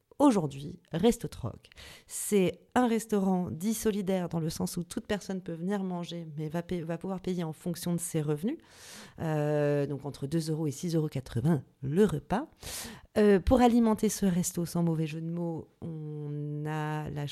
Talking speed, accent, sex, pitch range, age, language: 175 wpm, French, female, 150-180 Hz, 40-59, French